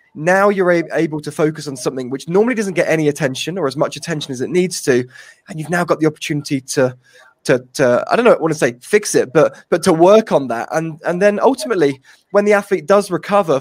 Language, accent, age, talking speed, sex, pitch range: English, British, 20-39, 240 wpm, male, 140-190 Hz